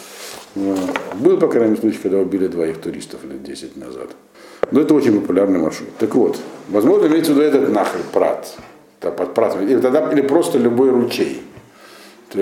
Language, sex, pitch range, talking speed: Russian, male, 105-140 Hz, 155 wpm